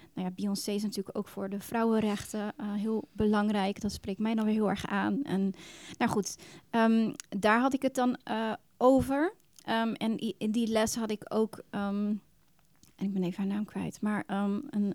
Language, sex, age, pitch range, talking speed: Dutch, female, 30-49, 200-235 Hz, 205 wpm